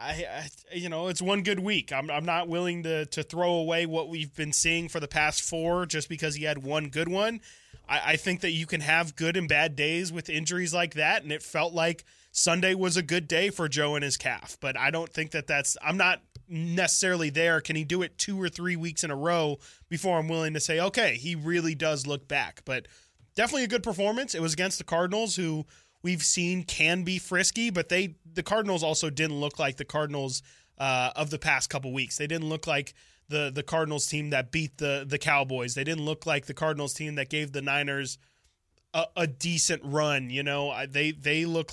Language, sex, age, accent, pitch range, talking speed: English, male, 20-39, American, 140-170 Hz, 230 wpm